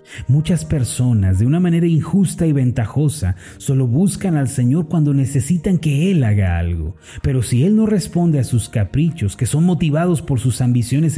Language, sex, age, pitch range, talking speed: Spanish, male, 30-49, 110-155 Hz, 170 wpm